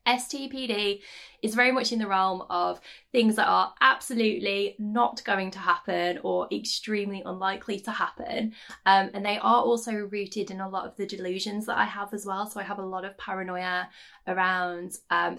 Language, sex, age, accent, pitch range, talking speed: English, female, 20-39, British, 185-225 Hz, 185 wpm